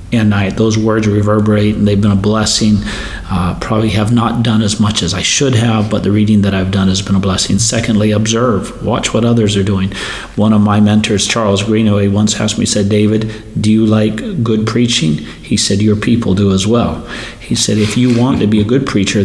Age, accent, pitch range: 40-59, American, 100-110 Hz